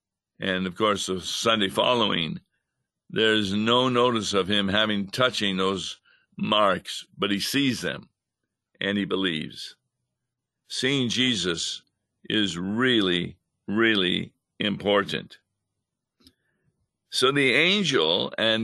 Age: 60-79